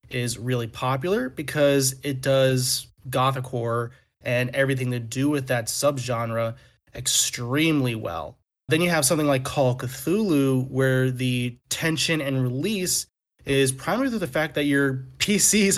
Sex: male